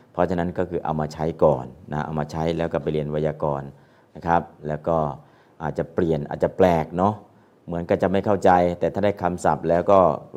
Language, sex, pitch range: Thai, male, 80-100 Hz